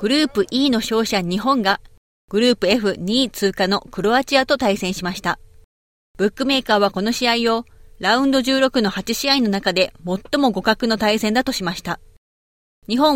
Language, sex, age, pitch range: Japanese, female, 30-49, 190-255 Hz